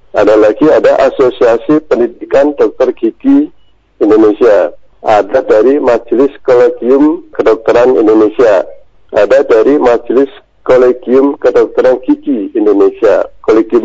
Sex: male